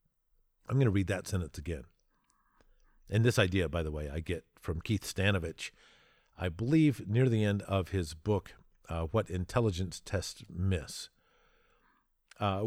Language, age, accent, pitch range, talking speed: English, 50-69, American, 90-115 Hz, 150 wpm